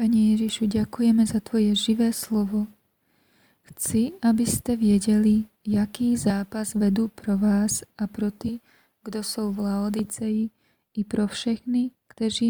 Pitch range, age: 205-225 Hz, 20-39